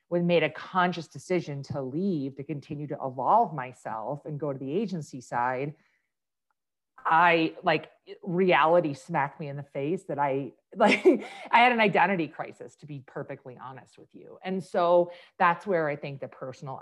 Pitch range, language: 135-175 Hz, English